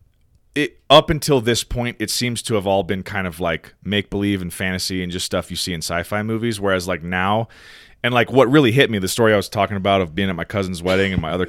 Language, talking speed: English, 250 wpm